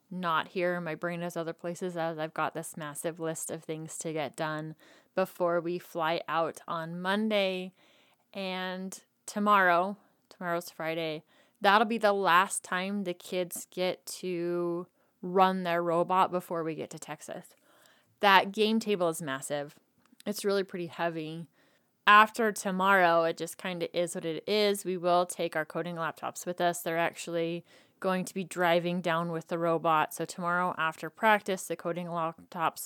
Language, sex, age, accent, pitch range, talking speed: English, female, 20-39, American, 165-190 Hz, 165 wpm